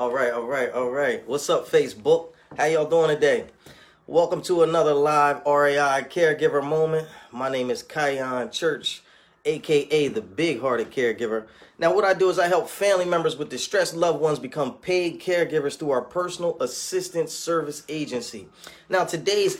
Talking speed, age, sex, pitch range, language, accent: 165 wpm, 20-39, male, 140-210 Hz, English, American